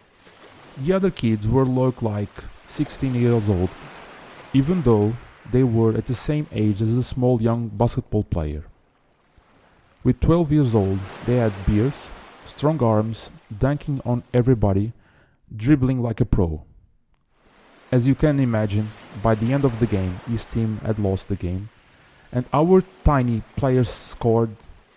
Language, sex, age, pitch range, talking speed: English, male, 30-49, 100-130 Hz, 145 wpm